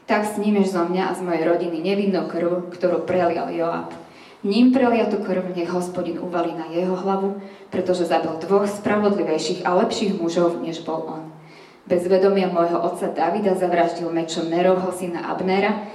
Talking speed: 165 wpm